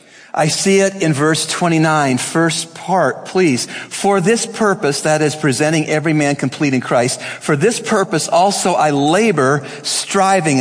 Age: 40-59